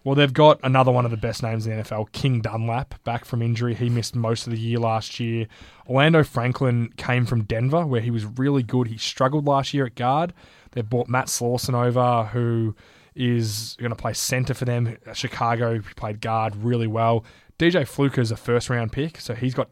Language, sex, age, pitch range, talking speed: English, male, 20-39, 115-135 Hz, 210 wpm